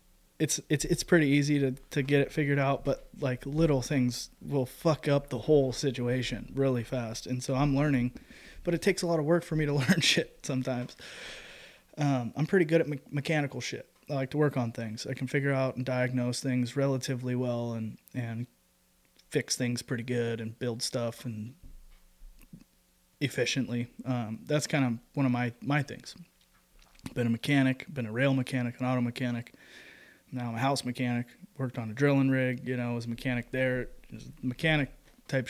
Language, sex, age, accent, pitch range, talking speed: English, male, 20-39, American, 120-140 Hz, 185 wpm